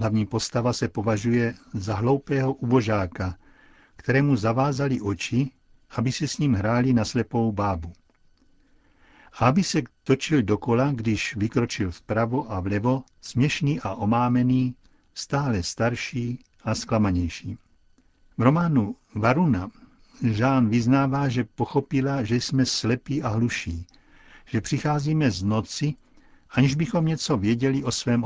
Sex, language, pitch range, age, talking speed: male, Czech, 105-135 Hz, 60-79, 120 wpm